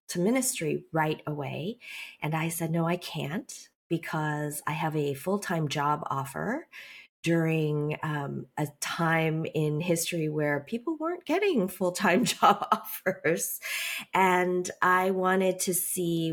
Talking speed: 130 wpm